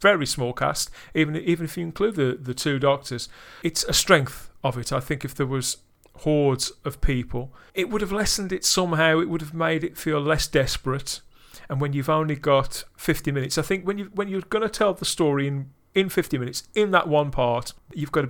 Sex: male